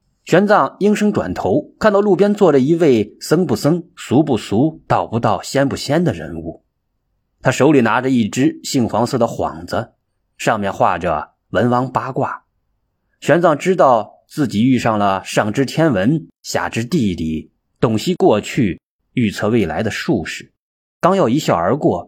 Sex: male